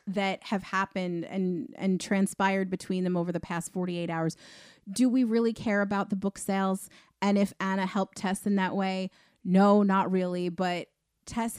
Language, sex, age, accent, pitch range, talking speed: English, female, 30-49, American, 175-205 Hz, 175 wpm